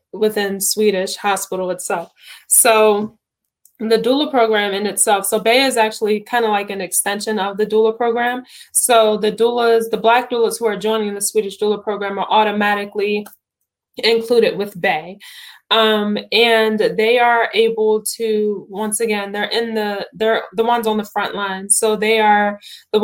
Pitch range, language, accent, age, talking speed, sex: 205-220 Hz, English, American, 10-29, 165 wpm, female